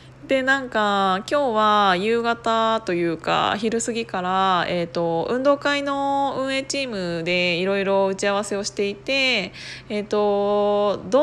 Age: 20-39